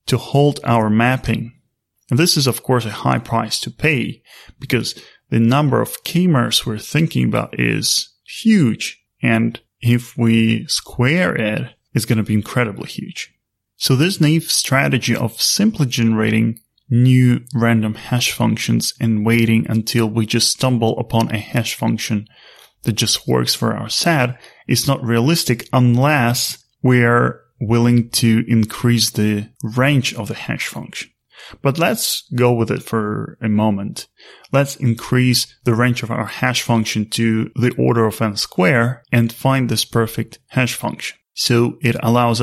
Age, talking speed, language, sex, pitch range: 20-39, 155 wpm, English, male, 115-130 Hz